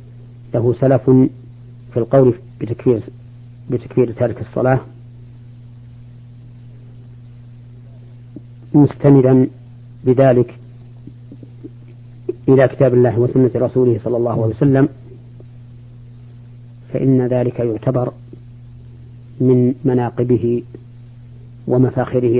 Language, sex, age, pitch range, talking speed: Arabic, female, 40-59, 120-125 Hz, 65 wpm